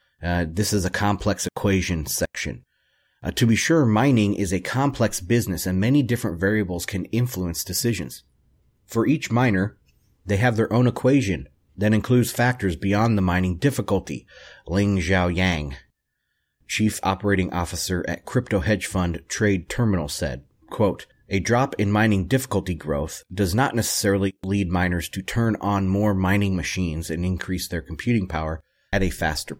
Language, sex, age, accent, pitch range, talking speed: English, male, 30-49, American, 90-115 Hz, 155 wpm